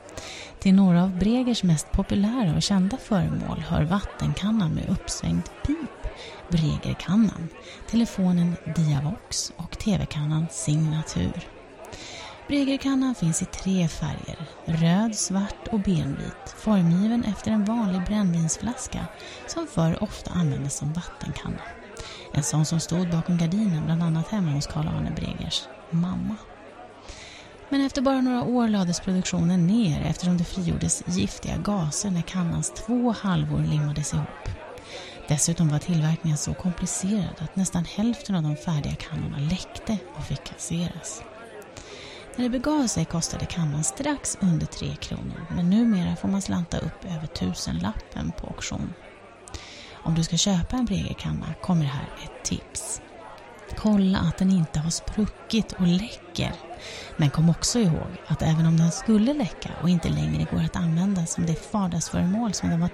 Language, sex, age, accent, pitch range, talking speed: Swedish, female, 30-49, native, 160-205 Hz, 145 wpm